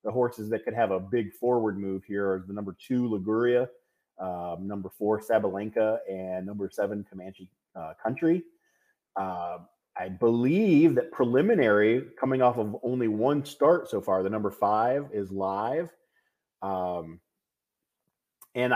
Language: English